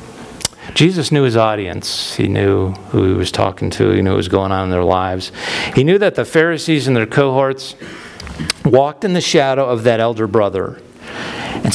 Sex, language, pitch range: male, English, 95-130 Hz